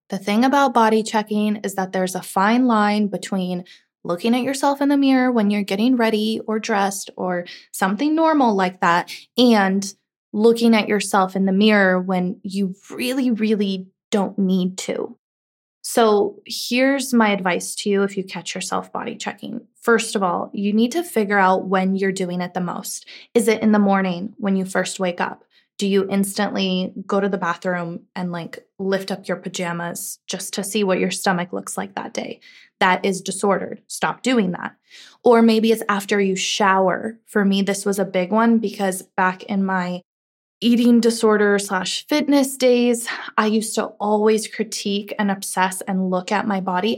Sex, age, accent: female, 20-39, American